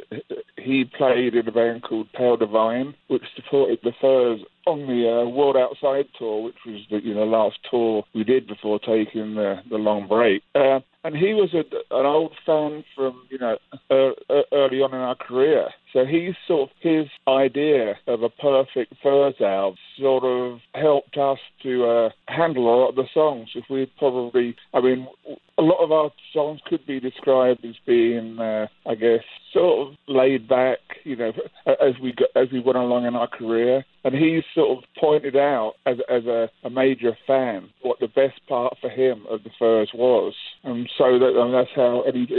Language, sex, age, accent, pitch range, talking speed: English, male, 50-69, British, 115-140 Hz, 195 wpm